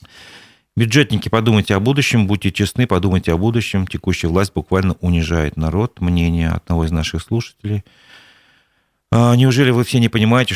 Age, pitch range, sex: 40-59, 90-110 Hz, male